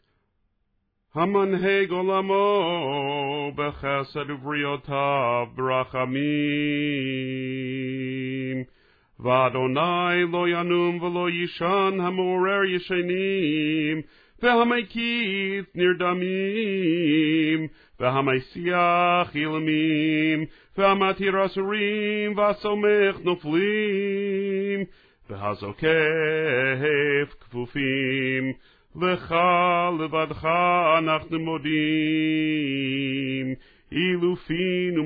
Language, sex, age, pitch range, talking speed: Russian, male, 40-59, 150-195 Hz, 45 wpm